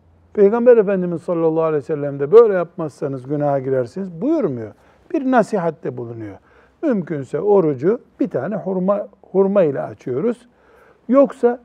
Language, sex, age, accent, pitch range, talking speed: Turkish, male, 60-79, native, 145-210 Hz, 125 wpm